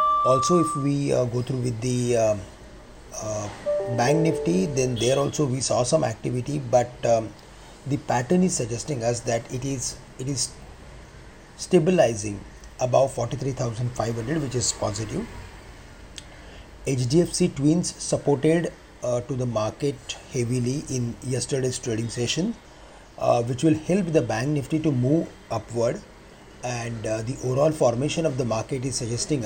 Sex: male